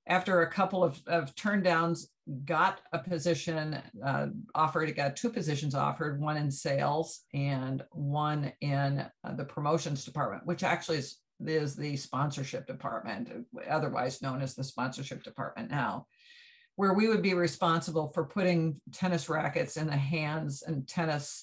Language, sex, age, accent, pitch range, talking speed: English, female, 50-69, American, 140-170 Hz, 150 wpm